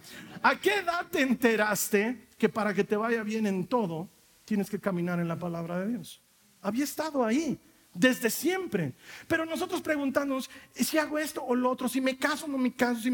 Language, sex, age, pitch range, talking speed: Spanish, male, 40-59, 200-265 Hz, 195 wpm